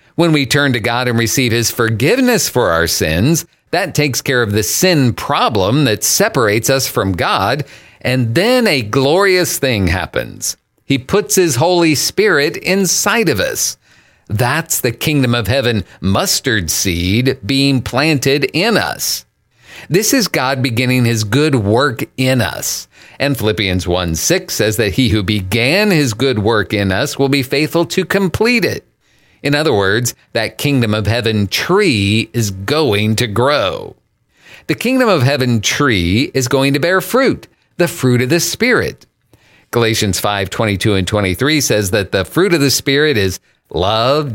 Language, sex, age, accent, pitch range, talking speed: English, male, 50-69, American, 110-145 Hz, 160 wpm